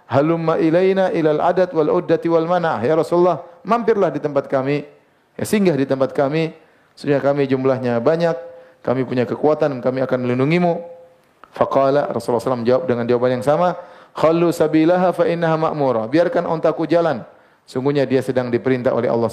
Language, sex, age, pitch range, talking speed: Indonesian, male, 30-49, 125-160 Hz, 140 wpm